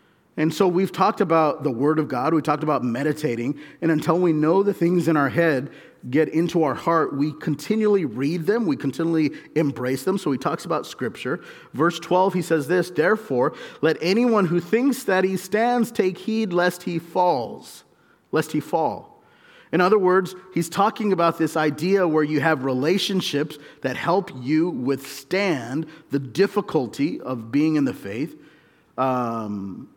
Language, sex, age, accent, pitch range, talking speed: English, male, 40-59, American, 145-180 Hz, 170 wpm